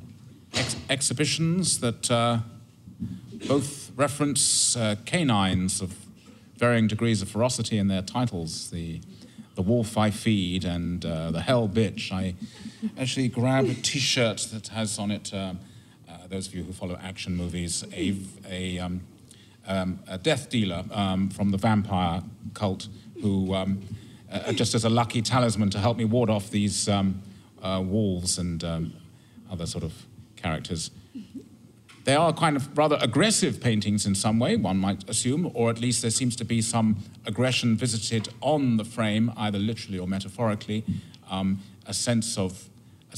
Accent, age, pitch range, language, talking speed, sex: British, 40-59, 95-120 Hz, English, 155 wpm, male